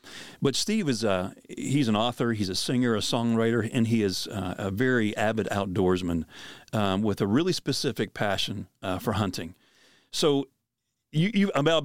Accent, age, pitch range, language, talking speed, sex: American, 40-59, 100-130 Hz, English, 150 wpm, male